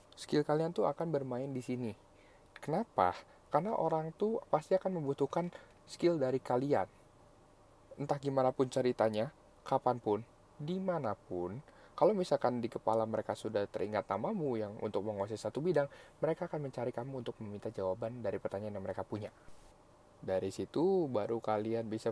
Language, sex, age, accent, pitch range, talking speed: Indonesian, male, 20-39, native, 105-140 Hz, 145 wpm